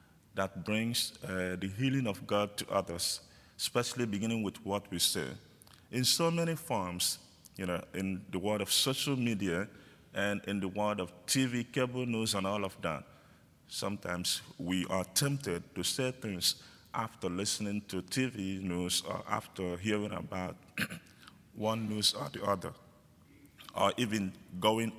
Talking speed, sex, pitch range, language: 150 wpm, male, 90-110 Hz, English